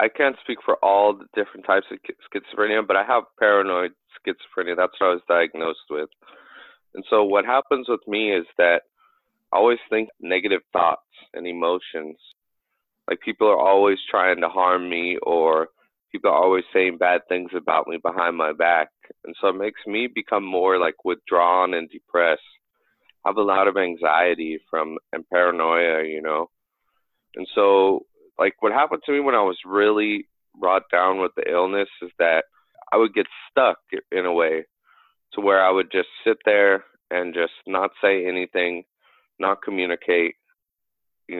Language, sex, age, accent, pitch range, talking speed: English, male, 30-49, American, 85-105 Hz, 170 wpm